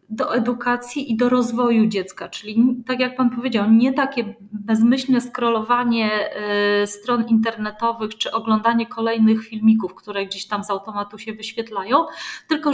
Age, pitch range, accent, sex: 30-49, 210-245 Hz, native, female